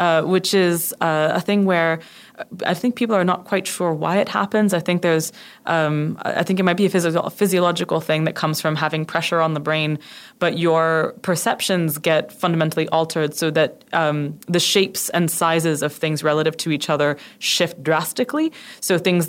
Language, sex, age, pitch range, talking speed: English, female, 20-39, 155-200 Hz, 190 wpm